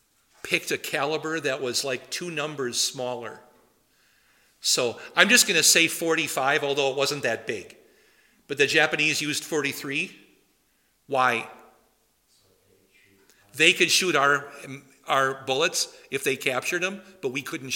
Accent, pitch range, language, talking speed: American, 125-160 Hz, English, 135 wpm